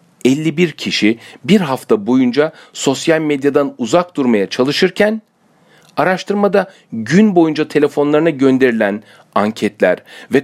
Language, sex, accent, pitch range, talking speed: Turkish, male, native, 140-205 Hz, 100 wpm